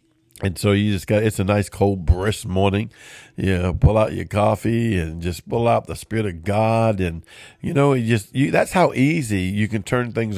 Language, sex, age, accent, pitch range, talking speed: English, male, 50-69, American, 100-130 Hz, 220 wpm